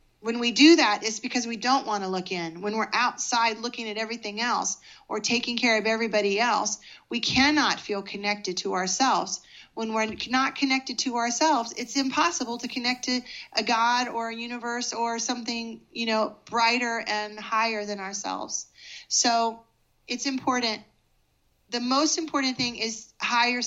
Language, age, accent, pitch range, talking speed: English, 30-49, American, 210-245 Hz, 165 wpm